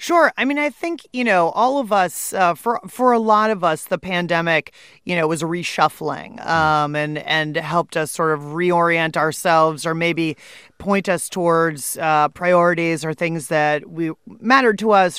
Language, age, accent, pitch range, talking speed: English, 30-49, American, 160-185 Hz, 180 wpm